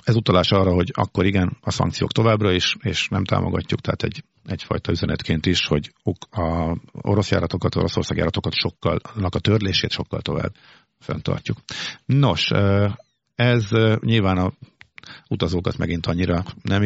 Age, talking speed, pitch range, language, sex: 50-69, 140 wpm, 85-110 Hz, Hungarian, male